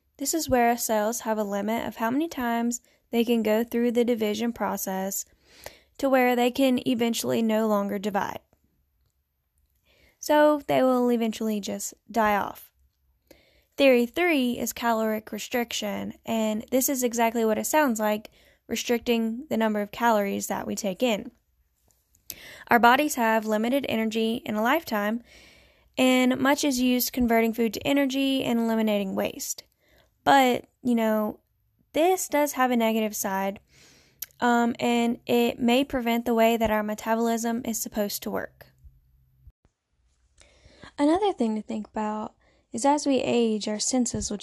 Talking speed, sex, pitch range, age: 150 wpm, female, 215-250 Hz, 10-29